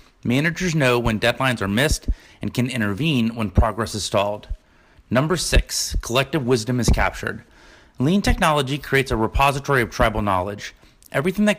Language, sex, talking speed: English, male, 150 wpm